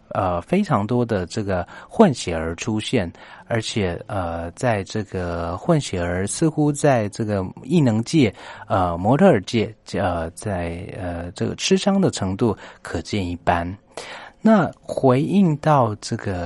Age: 30-49